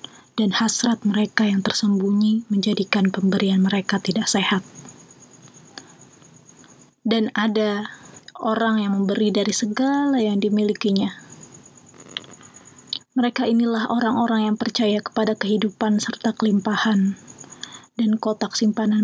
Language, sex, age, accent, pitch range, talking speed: Indonesian, female, 20-39, native, 210-230 Hz, 100 wpm